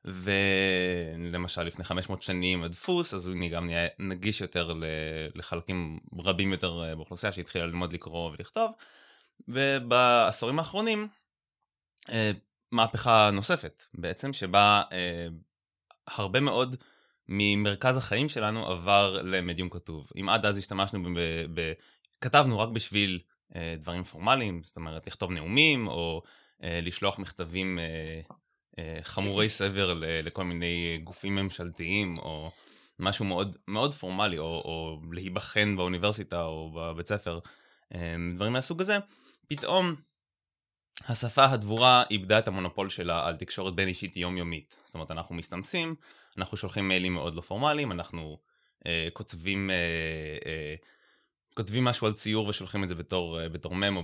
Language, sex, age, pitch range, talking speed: Hebrew, male, 20-39, 85-105 Hz, 125 wpm